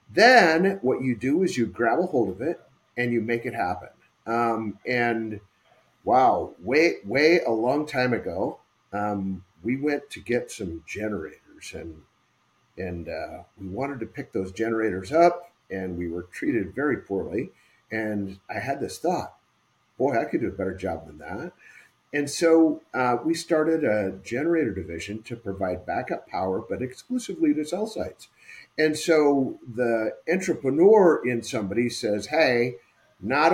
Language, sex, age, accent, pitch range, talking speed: English, male, 50-69, American, 105-150 Hz, 155 wpm